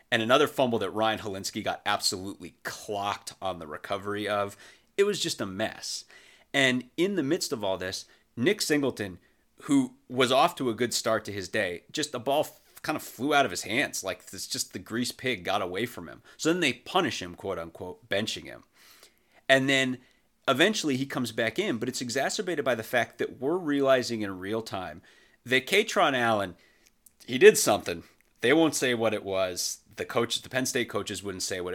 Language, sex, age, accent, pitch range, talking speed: English, male, 30-49, American, 100-140 Hz, 200 wpm